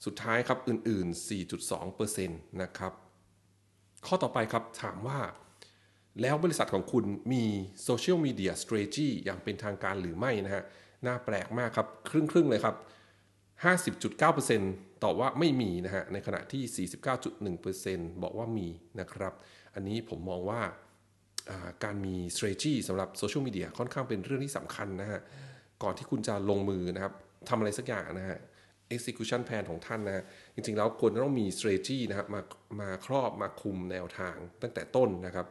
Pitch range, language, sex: 95-120 Hz, English, male